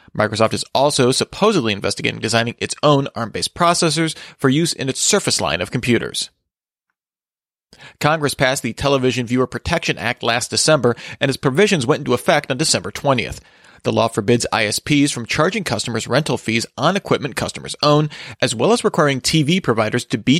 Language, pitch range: English, 115-150 Hz